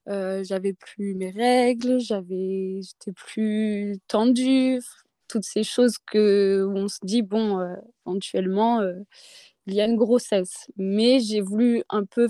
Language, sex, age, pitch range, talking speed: French, female, 20-39, 195-240 Hz, 150 wpm